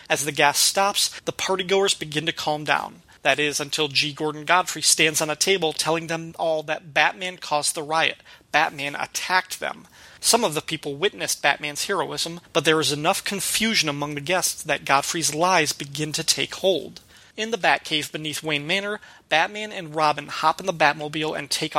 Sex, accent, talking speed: male, American, 185 wpm